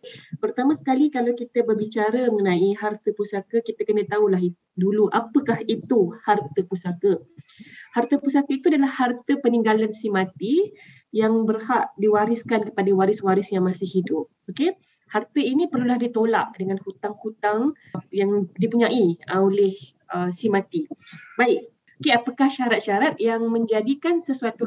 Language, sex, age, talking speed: Malay, female, 20-39, 130 wpm